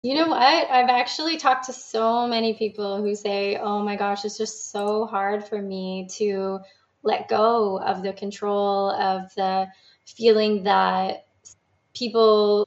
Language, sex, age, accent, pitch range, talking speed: English, female, 20-39, American, 200-230 Hz, 150 wpm